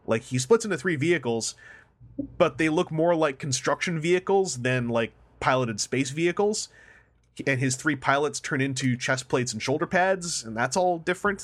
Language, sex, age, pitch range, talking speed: English, male, 30-49, 120-155 Hz, 175 wpm